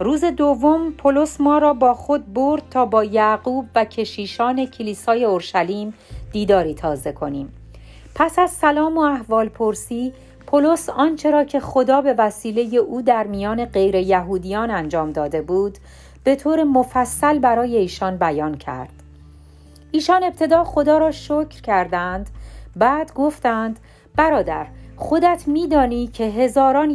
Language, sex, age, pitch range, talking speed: Persian, female, 40-59, 190-275 Hz, 130 wpm